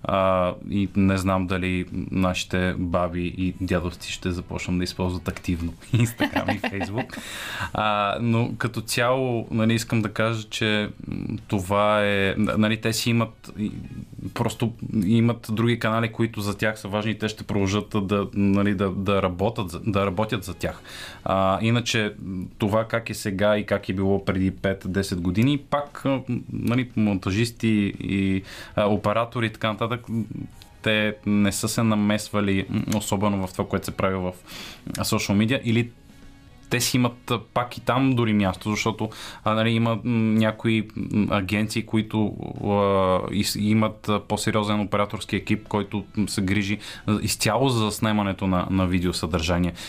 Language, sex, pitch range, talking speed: Bulgarian, male, 95-115 Hz, 140 wpm